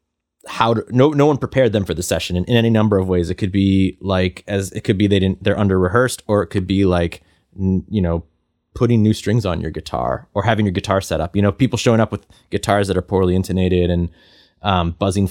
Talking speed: 245 wpm